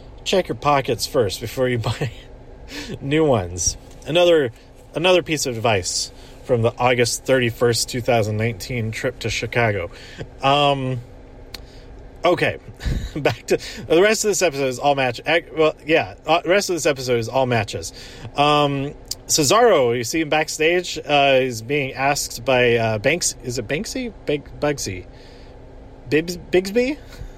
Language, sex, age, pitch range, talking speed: English, male, 30-49, 120-155 Hz, 145 wpm